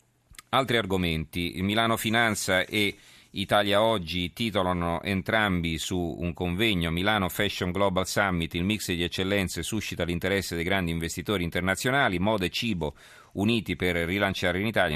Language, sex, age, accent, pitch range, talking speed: Italian, male, 40-59, native, 85-105 Hz, 140 wpm